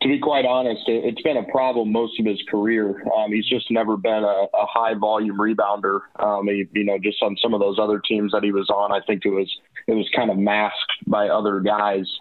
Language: English